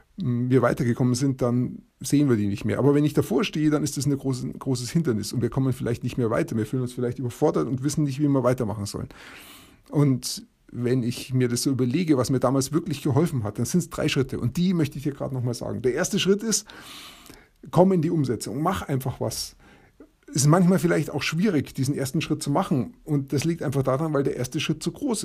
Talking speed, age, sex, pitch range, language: 240 wpm, 30-49, male, 125-165 Hz, German